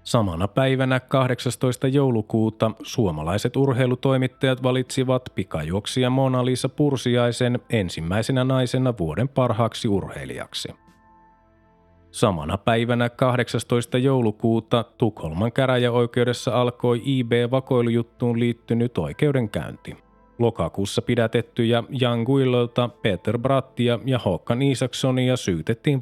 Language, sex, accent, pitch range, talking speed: Finnish, male, native, 110-130 Hz, 85 wpm